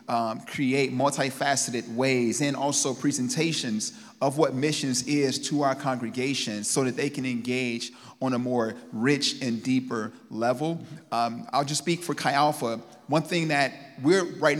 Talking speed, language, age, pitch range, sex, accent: 155 wpm, English, 30-49, 120-150 Hz, male, American